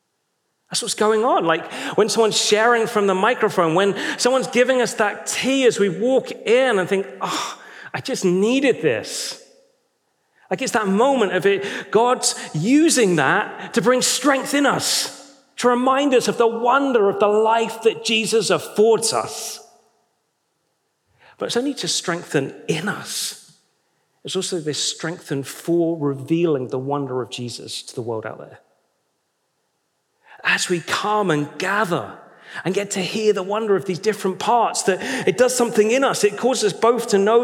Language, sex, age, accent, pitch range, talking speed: English, male, 40-59, British, 160-235 Hz, 165 wpm